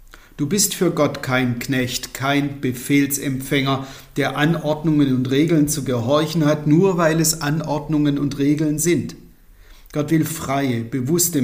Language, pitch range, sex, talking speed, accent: German, 120-160 Hz, male, 135 wpm, German